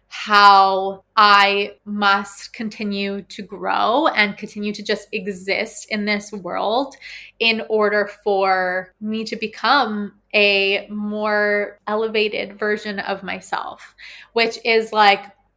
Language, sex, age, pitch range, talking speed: English, female, 20-39, 200-230 Hz, 110 wpm